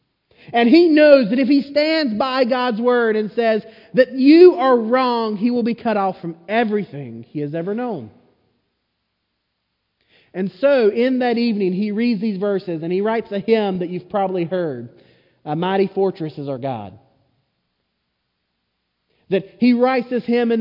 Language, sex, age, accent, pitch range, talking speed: English, male, 40-59, American, 165-245 Hz, 165 wpm